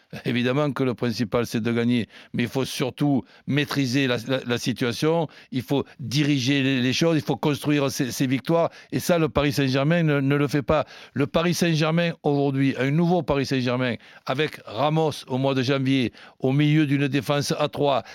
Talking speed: 190 wpm